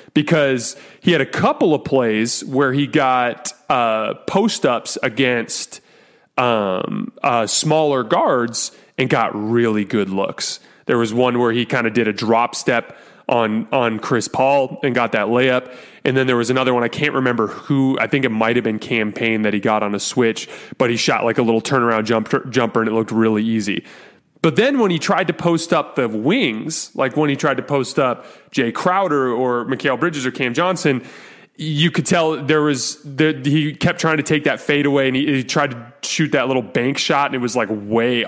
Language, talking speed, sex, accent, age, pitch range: English, 210 wpm, male, American, 30-49, 115-145 Hz